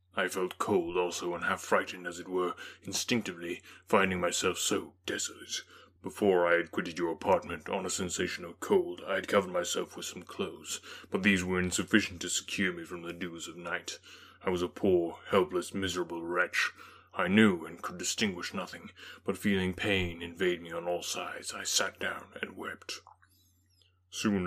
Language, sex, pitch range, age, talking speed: English, male, 90-95 Hz, 20-39, 175 wpm